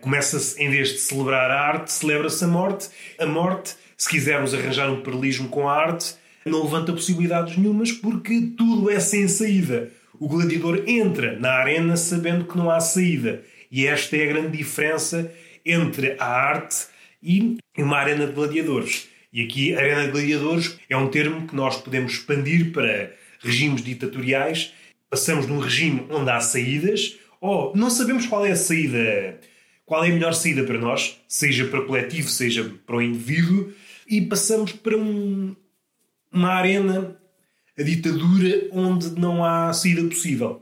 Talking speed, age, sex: 160 wpm, 30-49, male